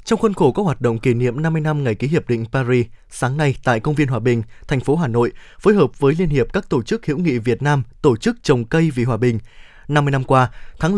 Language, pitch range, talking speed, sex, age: Vietnamese, 125-160 Hz, 270 wpm, male, 20-39